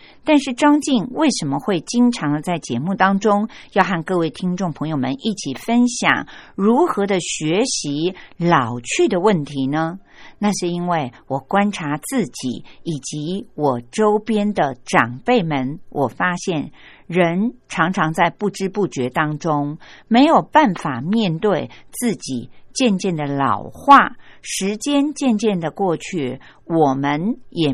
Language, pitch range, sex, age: Chinese, 150-220 Hz, female, 50-69